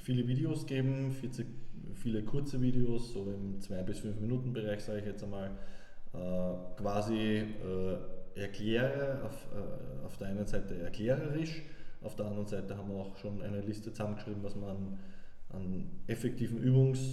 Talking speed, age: 140 wpm, 20-39